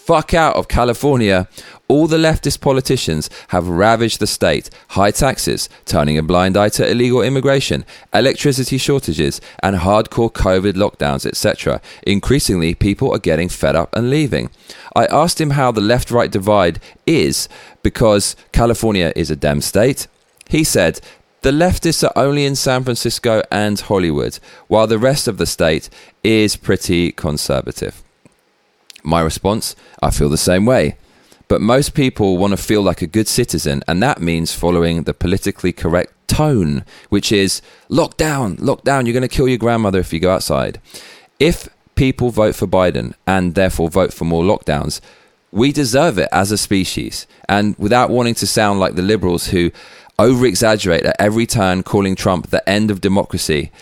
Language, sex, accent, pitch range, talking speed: English, male, British, 90-125 Hz, 165 wpm